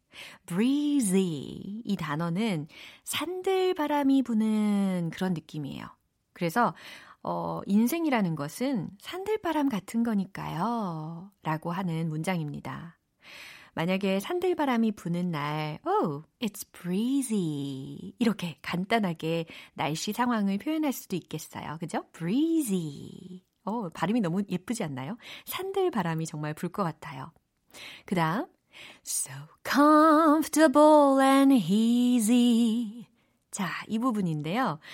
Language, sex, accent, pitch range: Korean, female, native, 170-275 Hz